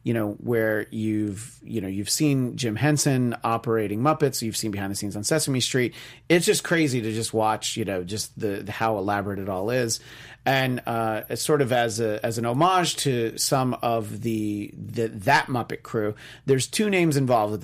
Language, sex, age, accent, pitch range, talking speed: English, male, 30-49, American, 110-145 Hz, 195 wpm